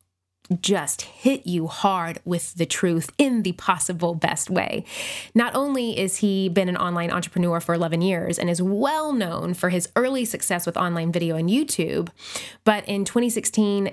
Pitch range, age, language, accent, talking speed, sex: 170-200 Hz, 20-39, English, American, 170 wpm, female